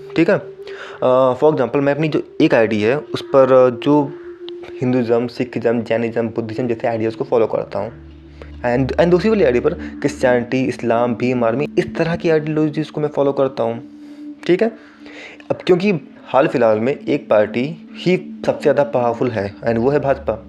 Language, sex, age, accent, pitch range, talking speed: Hindi, male, 20-39, native, 120-165 Hz, 185 wpm